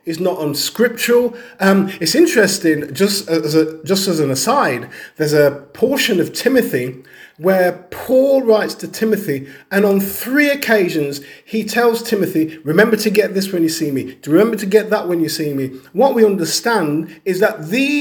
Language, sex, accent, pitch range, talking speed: English, male, British, 160-220 Hz, 175 wpm